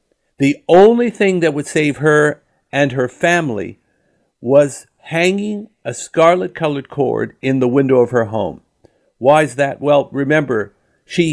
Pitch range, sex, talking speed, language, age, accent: 125-165 Hz, male, 145 wpm, English, 50-69, American